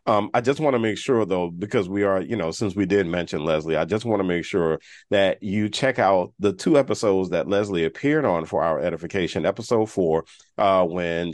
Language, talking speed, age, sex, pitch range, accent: English, 220 wpm, 40-59, male, 80-105 Hz, American